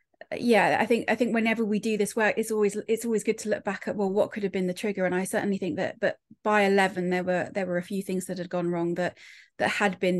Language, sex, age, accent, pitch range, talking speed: English, female, 30-49, British, 185-210 Hz, 290 wpm